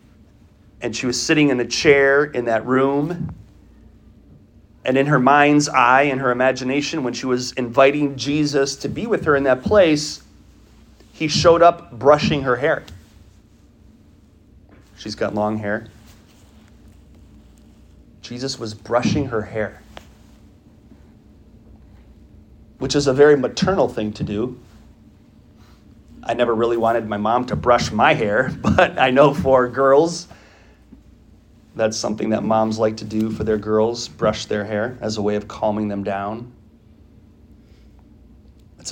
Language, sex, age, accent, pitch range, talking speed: English, male, 30-49, American, 105-130 Hz, 135 wpm